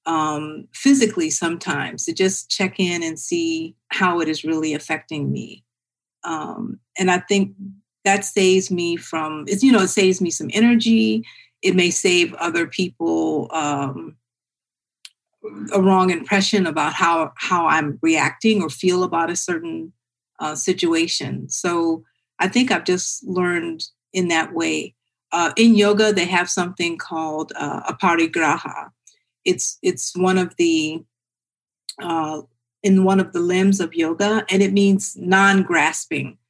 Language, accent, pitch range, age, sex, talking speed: English, American, 155-195 Hz, 40-59, female, 140 wpm